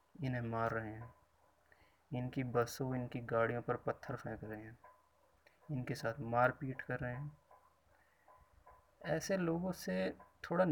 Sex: male